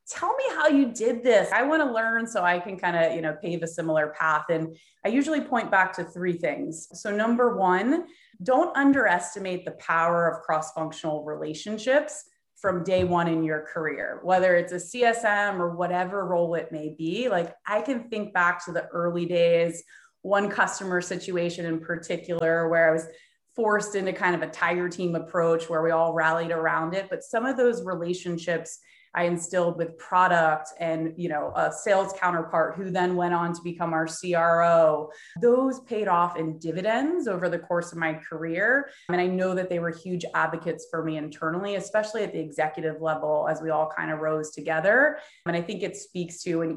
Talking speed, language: 195 wpm, English